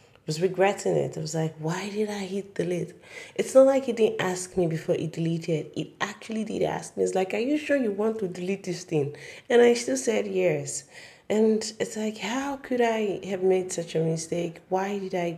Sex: female